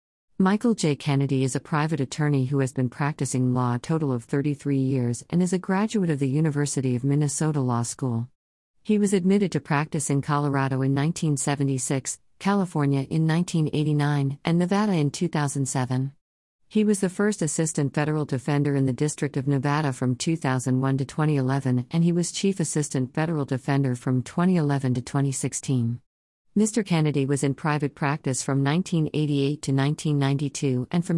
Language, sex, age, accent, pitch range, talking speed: English, female, 50-69, American, 135-160 Hz, 160 wpm